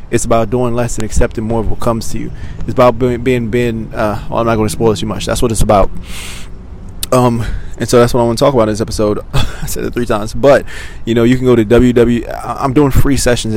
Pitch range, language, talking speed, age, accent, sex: 105-120 Hz, English, 270 wpm, 20-39, American, male